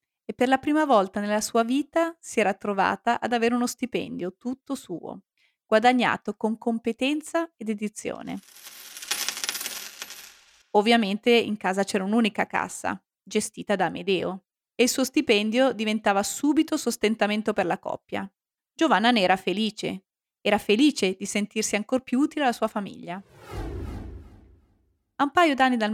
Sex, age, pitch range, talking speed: female, 30-49, 205-270 Hz, 140 wpm